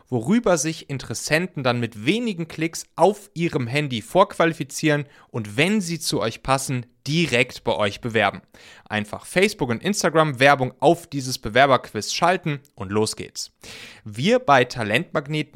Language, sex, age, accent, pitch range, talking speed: German, male, 30-49, German, 115-155 Hz, 140 wpm